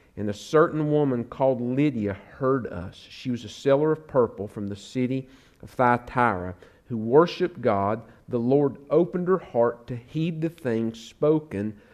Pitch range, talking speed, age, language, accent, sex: 100-125 Hz, 160 wpm, 50-69, English, American, male